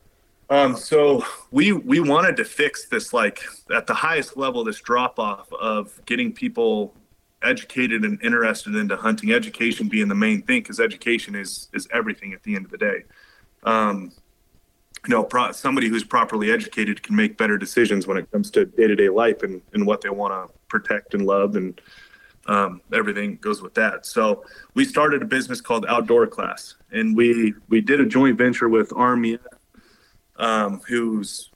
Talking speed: 180 wpm